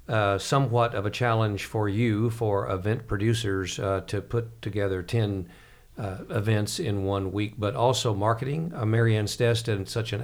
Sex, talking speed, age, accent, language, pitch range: male, 170 wpm, 50-69, American, English, 100-120 Hz